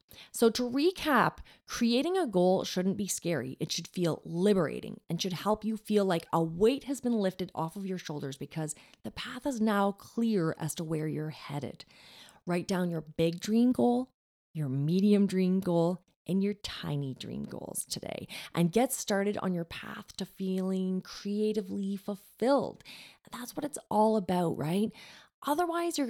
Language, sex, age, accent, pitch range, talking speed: English, female, 30-49, American, 170-220 Hz, 170 wpm